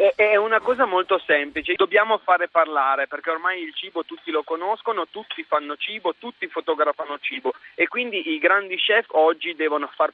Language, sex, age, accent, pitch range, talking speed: Italian, male, 30-49, native, 155-245 Hz, 170 wpm